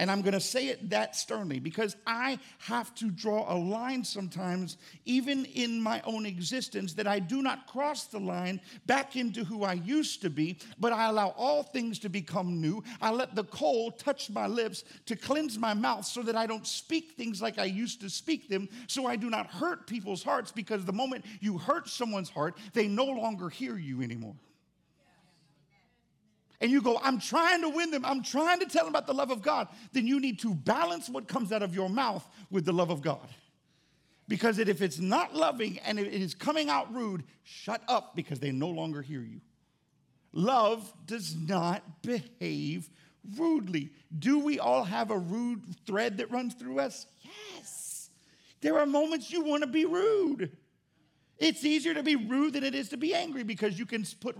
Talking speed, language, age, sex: 195 wpm, English, 50-69, male